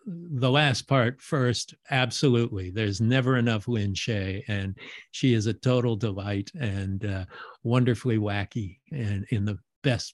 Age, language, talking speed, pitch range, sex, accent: 50-69, English, 140 wpm, 105-125 Hz, male, American